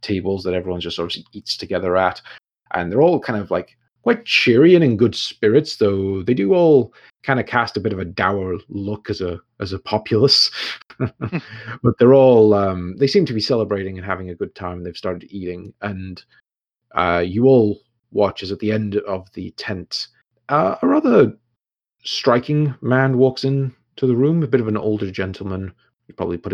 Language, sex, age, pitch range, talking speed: English, male, 30-49, 90-120 Hz, 195 wpm